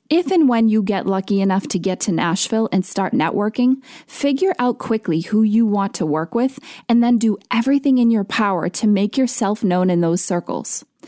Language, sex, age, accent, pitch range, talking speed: English, female, 20-39, American, 195-260 Hz, 200 wpm